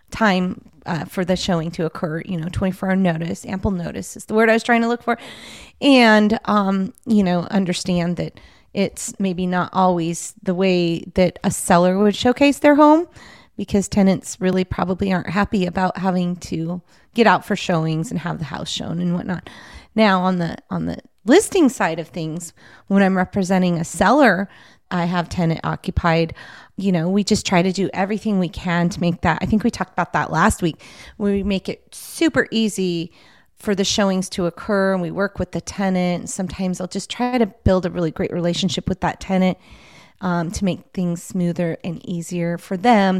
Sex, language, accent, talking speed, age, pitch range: female, English, American, 195 wpm, 30-49, 175-205 Hz